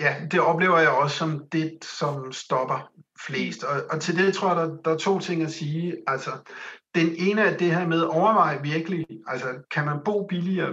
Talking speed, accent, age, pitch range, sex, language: 215 wpm, native, 60-79, 140-170 Hz, male, Danish